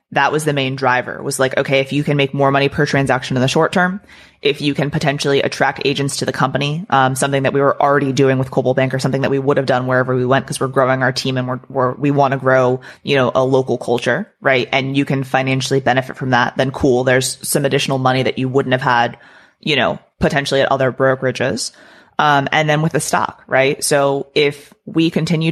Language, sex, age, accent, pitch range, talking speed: English, female, 20-39, American, 130-150 Hz, 240 wpm